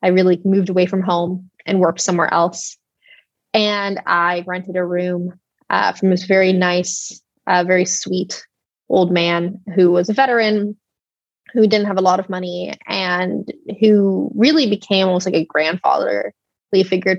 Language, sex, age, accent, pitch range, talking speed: English, female, 20-39, American, 180-205 Hz, 155 wpm